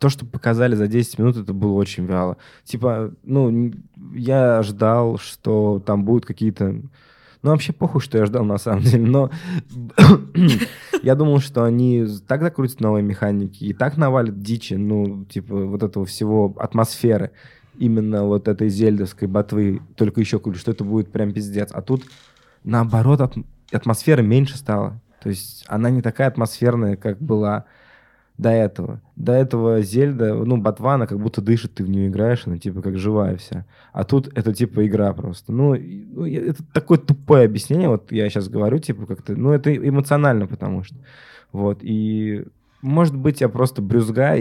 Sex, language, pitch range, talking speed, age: male, Russian, 105-125 Hz, 165 wpm, 20-39